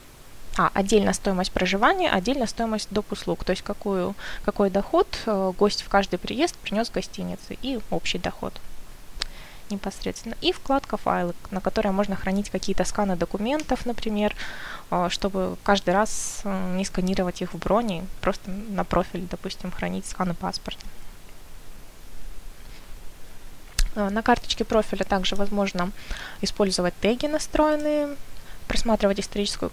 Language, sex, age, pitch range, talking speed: Russian, female, 20-39, 185-225 Hz, 120 wpm